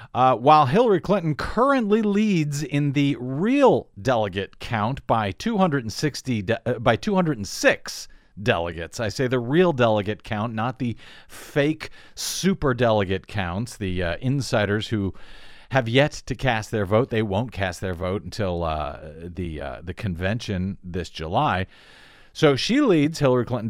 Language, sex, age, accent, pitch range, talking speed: English, male, 40-59, American, 110-155 Hz, 145 wpm